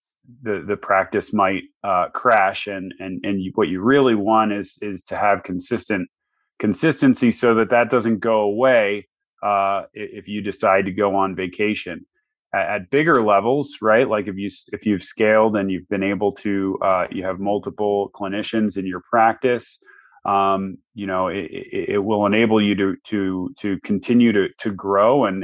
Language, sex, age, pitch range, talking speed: English, male, 30-49, 95-110 Hz, 175 wpm